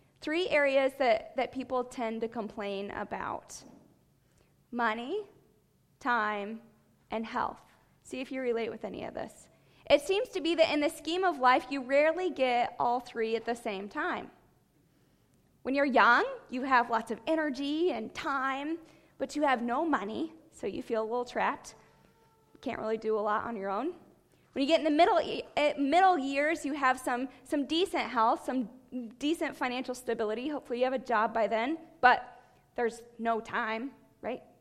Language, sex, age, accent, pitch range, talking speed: English, female, 20-39, American, 235-310 Hz, 175 wpm